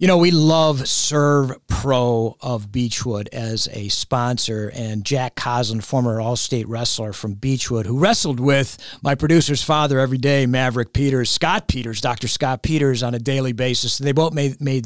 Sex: male